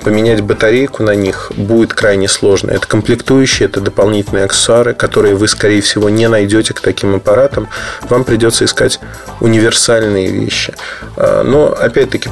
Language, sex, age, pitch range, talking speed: Russian, male, 30-49, 105-130 Hz, 135 wpm